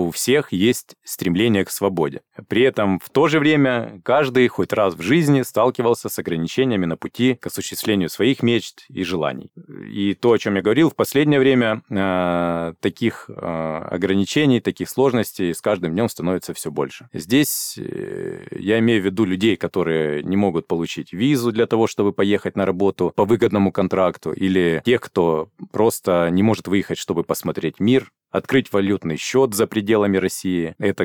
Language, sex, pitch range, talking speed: Russian, male, 90-115 Hz, 160 wpm